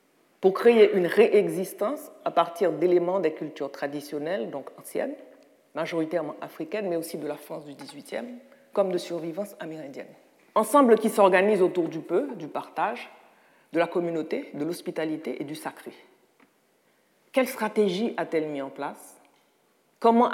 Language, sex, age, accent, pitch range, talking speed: French, female, 50-69, French, 155-215 Hz, 140 wpm